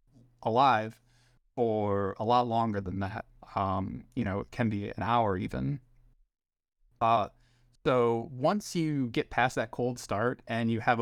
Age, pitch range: 30-49, 110-125 Hz